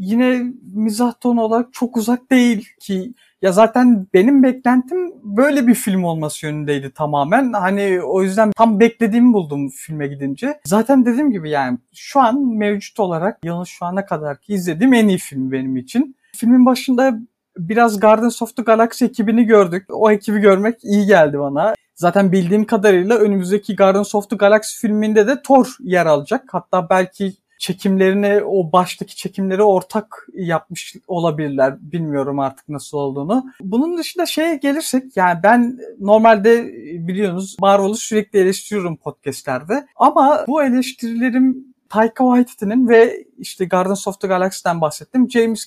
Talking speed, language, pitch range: 145 wpm, Turkish, 185-245 Hz